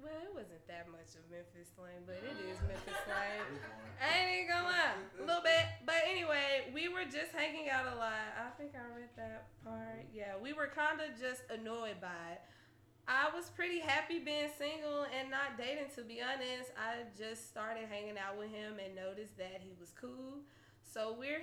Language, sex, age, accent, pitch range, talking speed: English, female, 20-39, American, 185-265 Hz, 200 wpm